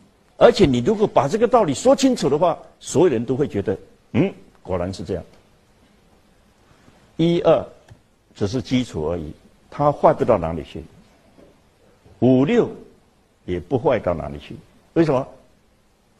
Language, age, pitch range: Chinese, 60-79, 100-135 Hz